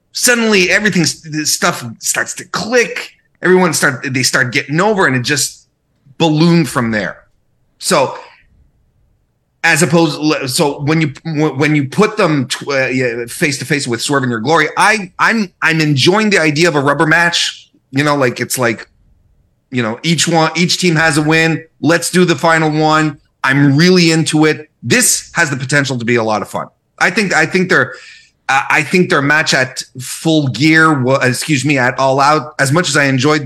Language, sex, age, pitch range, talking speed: English, male, 30-49, 130-170 Hz, 185 wpm